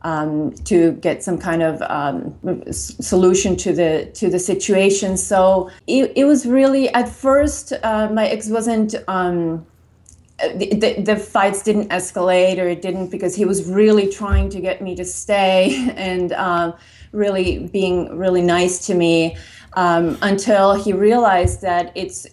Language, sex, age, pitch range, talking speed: English, female, 30-49, 165-200 Hz, 155 wpm